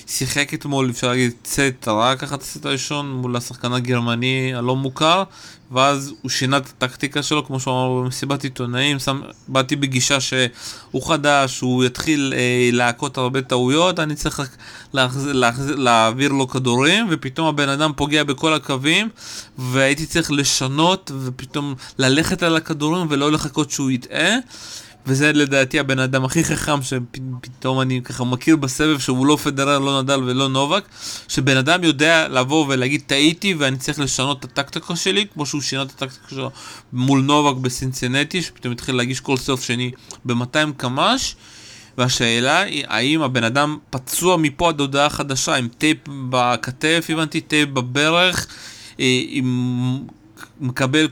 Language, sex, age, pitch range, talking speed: Hebrew, male, 20-39, 125-150 Hz, 145 wpm